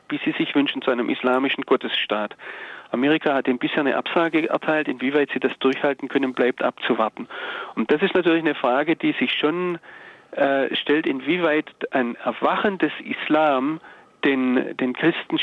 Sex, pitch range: male, 125-165 Hz